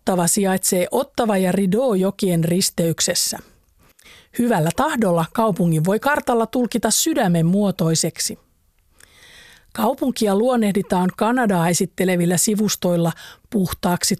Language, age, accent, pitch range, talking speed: Finnish, 50-69, native, 170-220 Hz, 85 wpm